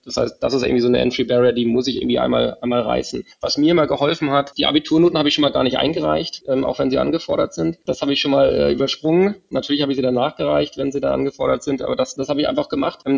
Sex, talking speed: male, 280 wpm